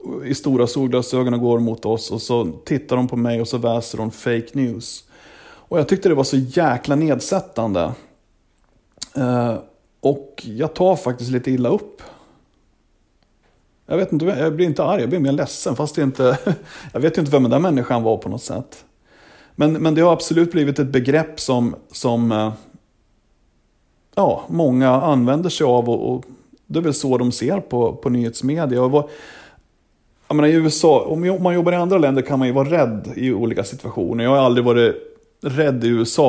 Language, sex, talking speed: English, male, 185 wpm